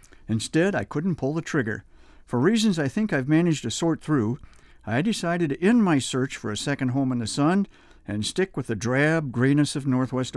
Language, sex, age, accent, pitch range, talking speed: English, male, 60-79, American, 120-170 Hz, 210 wpm